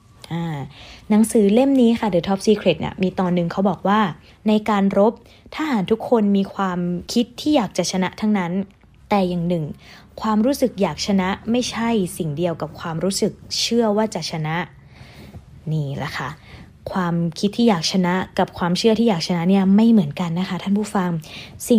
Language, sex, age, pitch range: Thai, female, 20-39, 175-225 Hz